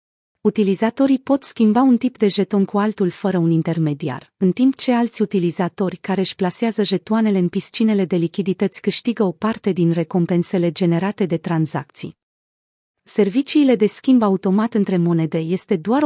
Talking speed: 155 wpm